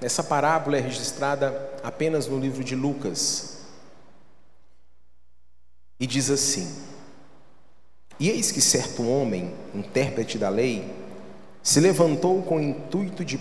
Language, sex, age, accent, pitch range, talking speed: Portuguese, male, 40-59, Brazilian, 110-155 Hz, 115 wpm